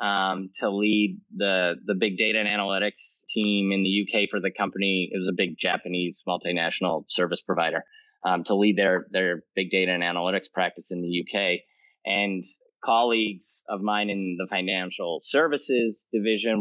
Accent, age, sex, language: American, 20-39, male, English